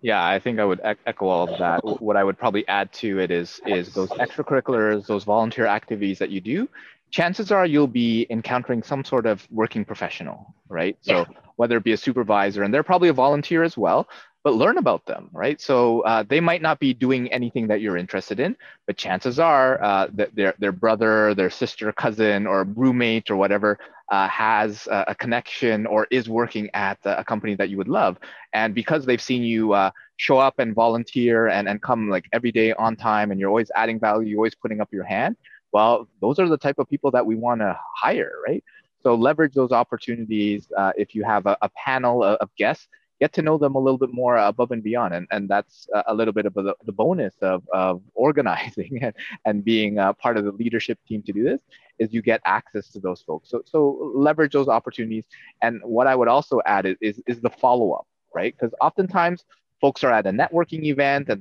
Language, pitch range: English, 105-130 Hz